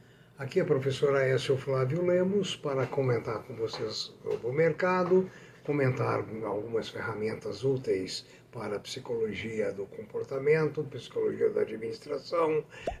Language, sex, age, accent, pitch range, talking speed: Portuguese, male, 60-79, Brazilian, 125-165 Hz, 120 wpm